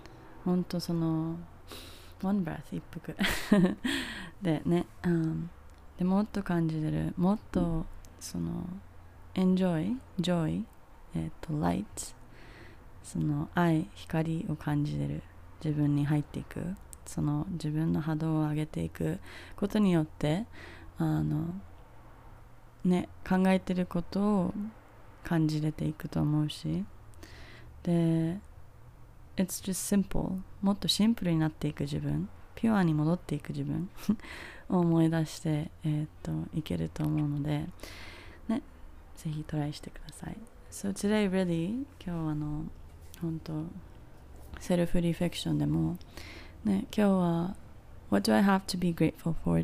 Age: 20-39